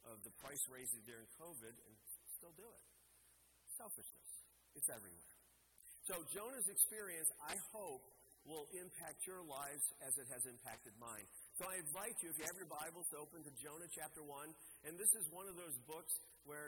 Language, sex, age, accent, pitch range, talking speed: English, male, 50-69, American, 125-170 Hz, 180 wpm